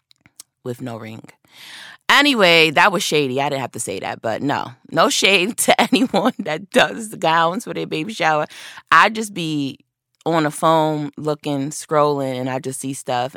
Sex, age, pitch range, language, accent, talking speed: female, 20-39, 130-165 Hz, English, American, 175 wpm